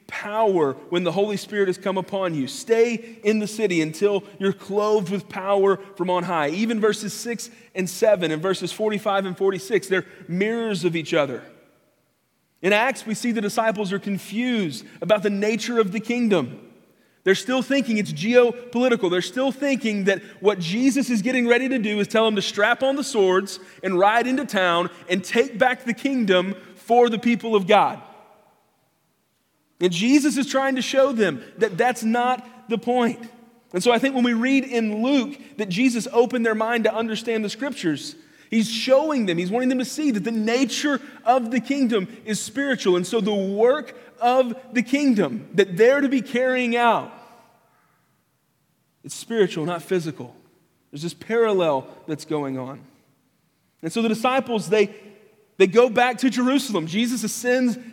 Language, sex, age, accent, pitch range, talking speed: English, male, 30-49, American, 195-245 Hz, 175 wpm